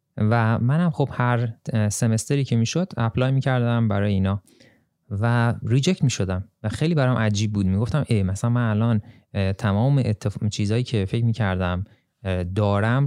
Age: 30-49